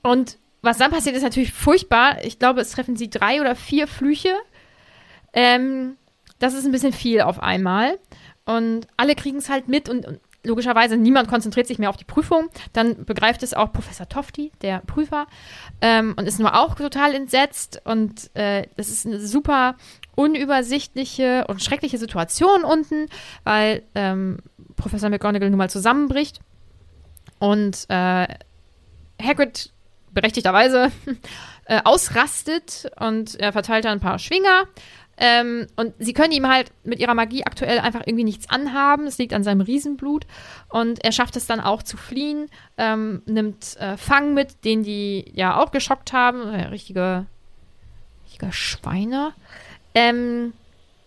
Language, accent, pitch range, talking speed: German, German, 200-265 Hz, 150 wpm